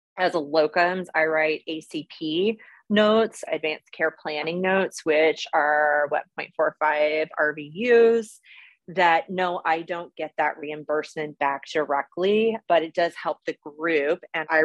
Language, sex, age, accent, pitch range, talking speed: English, female, 30-49, American, 150-180 Hz, 135 wpm